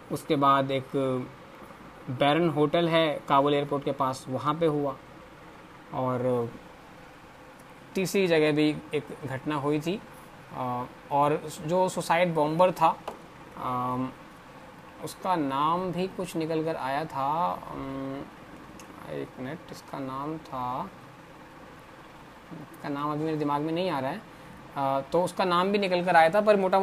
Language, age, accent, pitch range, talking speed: Hindi, 20-39, native, 140-185 Hz, 140 wpm